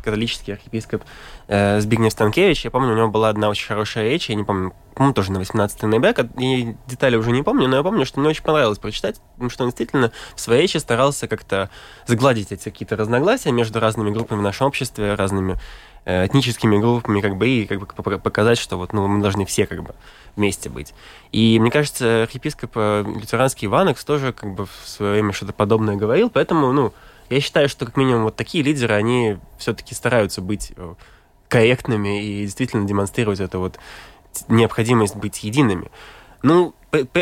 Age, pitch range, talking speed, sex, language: 20-39, 100-125 Hz, 185 wpm, male, Russian